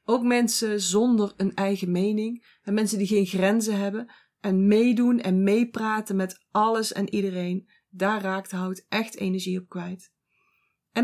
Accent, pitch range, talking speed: Dutch, 190-230 Hz, 150 wpm